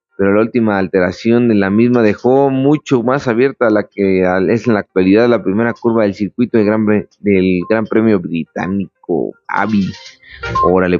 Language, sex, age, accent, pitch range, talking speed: Spanish, male, 30-49, Mexican, 100-125 Hz, 170 wpm